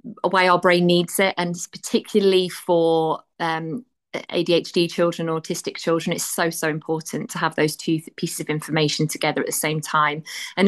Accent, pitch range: British, 160-185 Hz